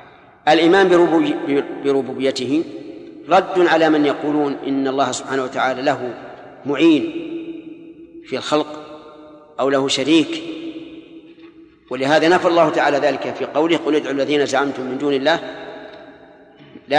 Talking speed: 115 wpm